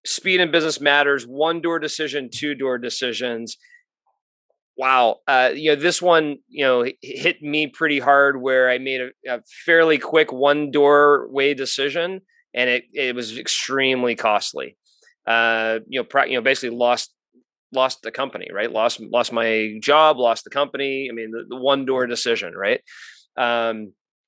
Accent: American